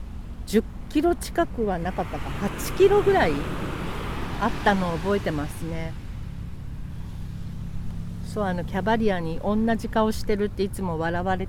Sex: female